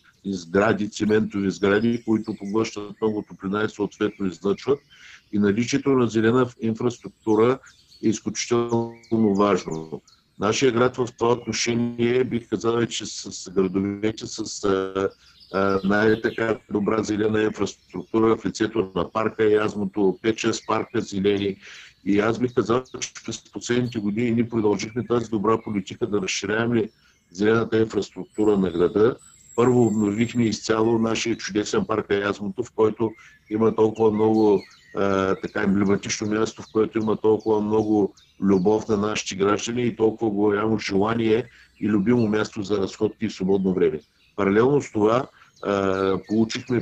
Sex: male